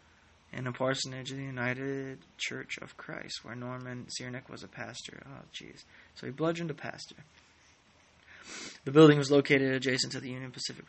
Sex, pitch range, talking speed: male, 130-150 Hz, 170 wpm